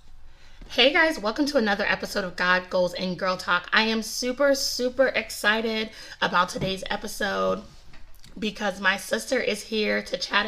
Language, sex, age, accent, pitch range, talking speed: English, female, 20-39, American, 185-230 Hz, 155 wpm